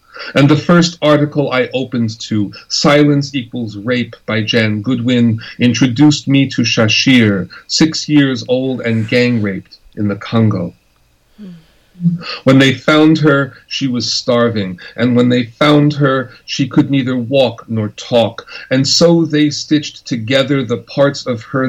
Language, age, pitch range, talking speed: English, 40-59, 115-140 Hz, 145 wpm